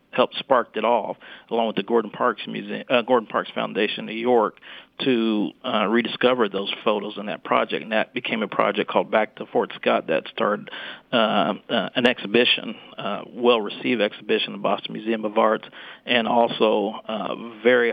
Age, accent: 40-59, American